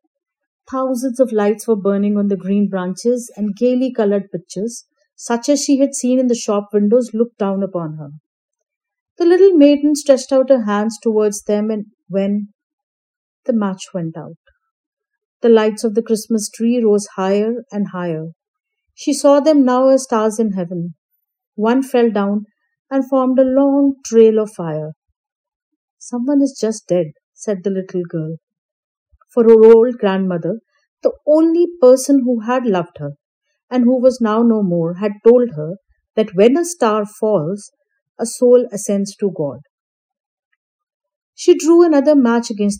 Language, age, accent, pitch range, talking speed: Hindi, 50-69, native, 200-275 Hz, 160 wpm